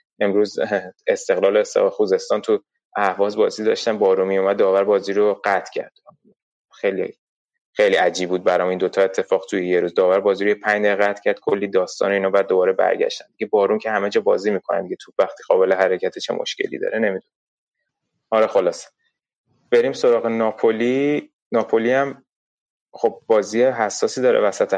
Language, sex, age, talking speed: Persian, male, 20-39, 160 wpm